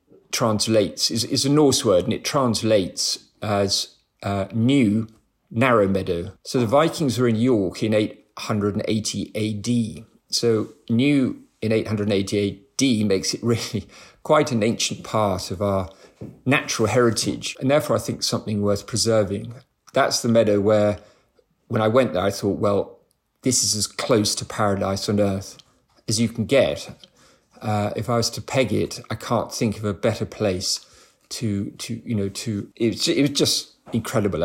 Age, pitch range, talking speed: 40-59, 100-115 Hz, 160 wpm